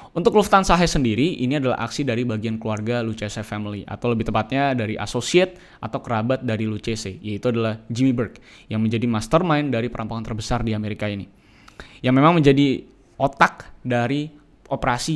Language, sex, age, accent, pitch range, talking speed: Indonesian, male, 10-29, native, 110-140 Hz, 160 wpm